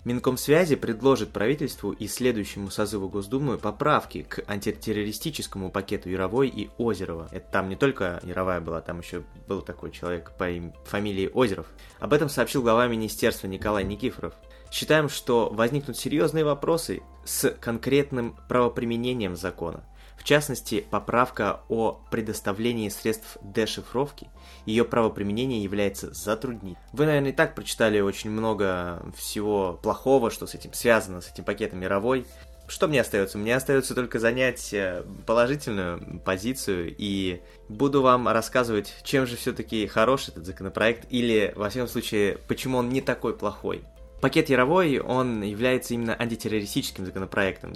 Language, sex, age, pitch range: Russian, male, 20-39, 95-125 Hz